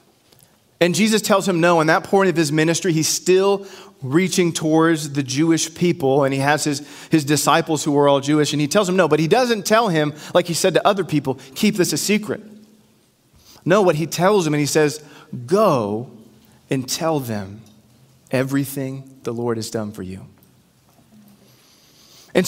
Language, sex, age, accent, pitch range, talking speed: English, male, 30-49, American, 150-190 Hz, 180 wpm